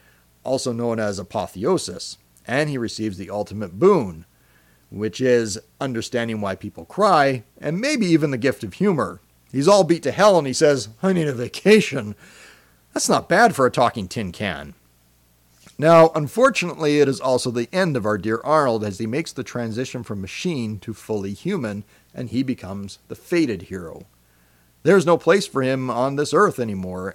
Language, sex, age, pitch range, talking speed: English, male, 40-59, 100-140 Hz, 175 wpm